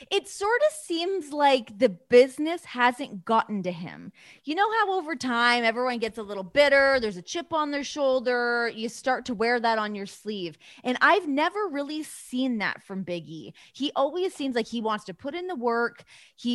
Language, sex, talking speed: English, female, 200 wpm